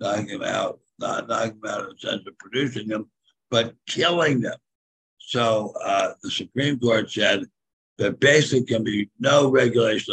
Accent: American